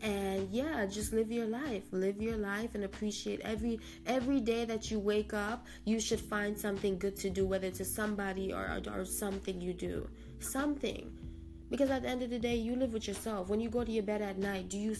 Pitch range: 195-230 Hz